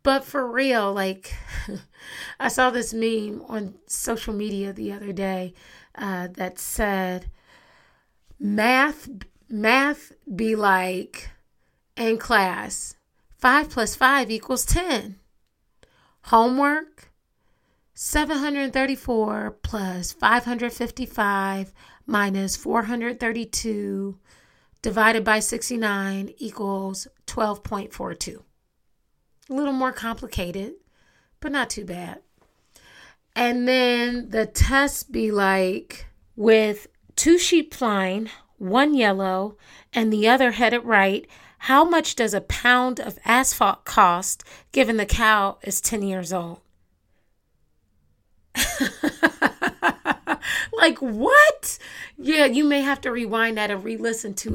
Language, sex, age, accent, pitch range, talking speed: English, female, 30-49, American, 195-255 Hz, 100 wpm